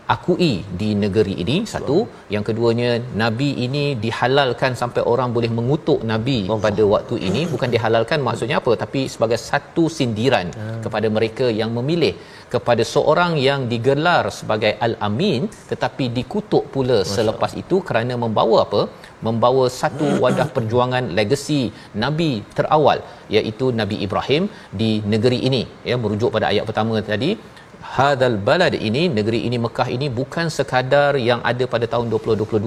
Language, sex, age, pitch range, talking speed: Malayalam, male, 40-59, 110-130 Hz, 145 wpm